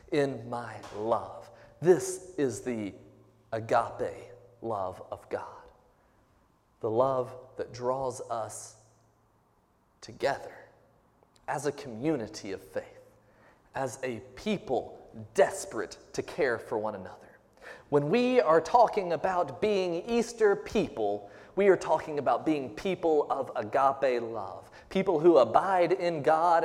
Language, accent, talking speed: English, American, 115 wpm